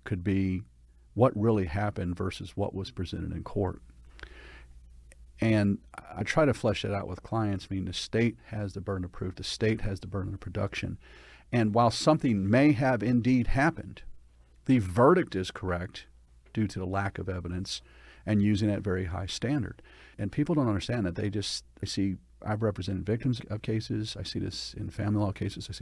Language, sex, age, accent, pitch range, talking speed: English, male, 40-59, American, 95-110 Hz, 190 wpm